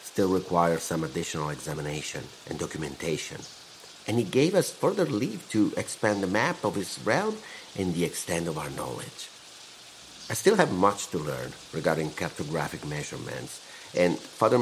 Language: English